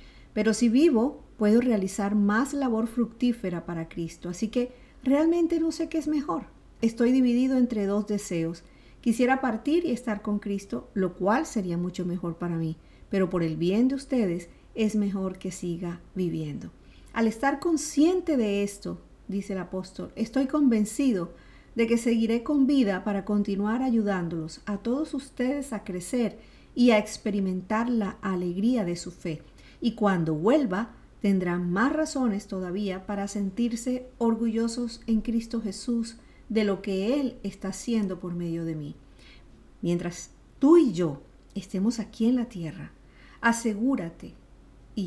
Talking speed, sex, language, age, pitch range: 150 wpm, female, Spanish, 50-69, 190-245 Hz